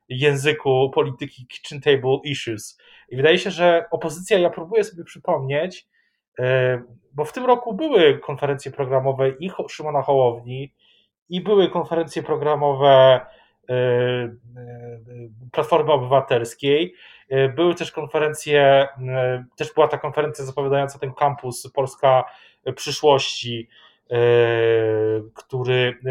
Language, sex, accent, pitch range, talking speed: Polish, male, native, 135-195 Hz, 100 wpm